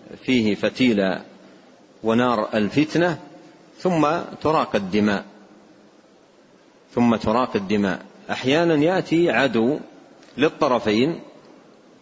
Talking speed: 70 wpm